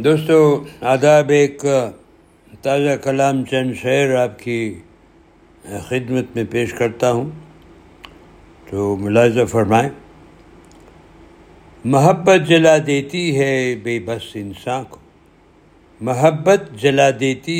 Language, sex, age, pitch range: Urdu, male, 60-79, 105-145 Hz